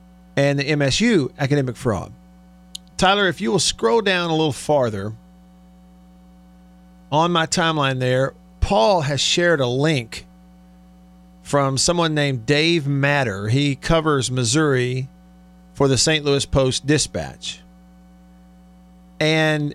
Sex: male